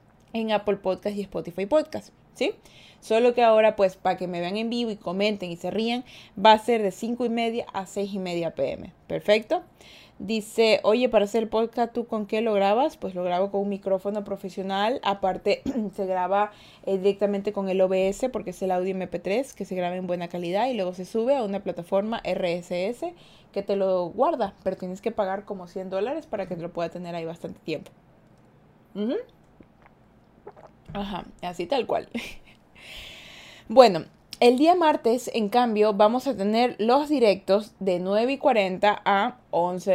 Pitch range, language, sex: 185-230 Hz, Spanish, female